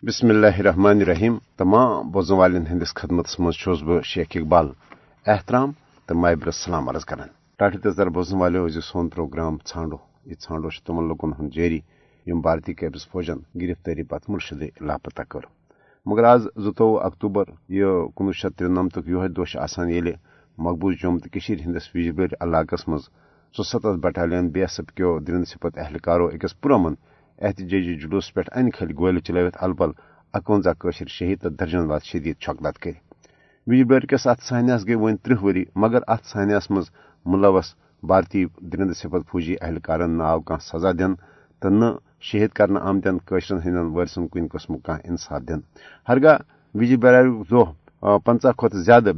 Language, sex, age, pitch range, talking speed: Urdu, male, 50-69, 85-105 Hz, 135 wpm